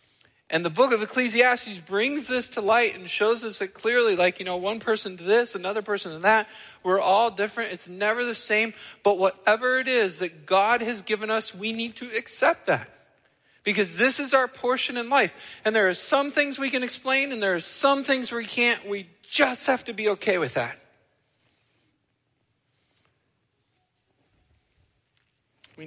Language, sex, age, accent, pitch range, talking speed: English, male, 40-59, American, 155-215 Hz, 180 wpm